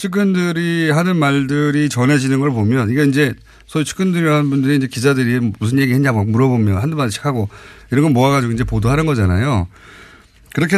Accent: native